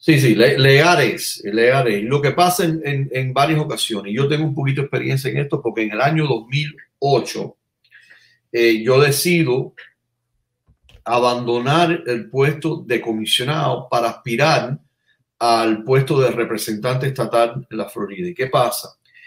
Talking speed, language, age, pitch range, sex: 145 wpm, English, 40-59, 120-160 Hz, male